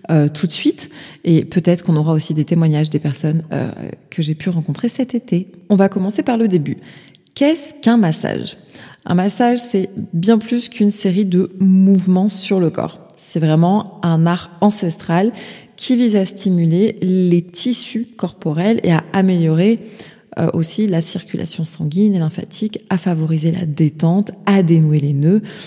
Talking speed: 165 wpm